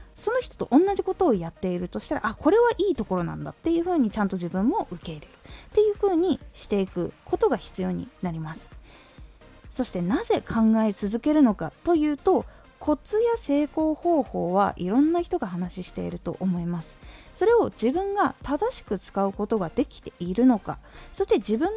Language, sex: Japanese, female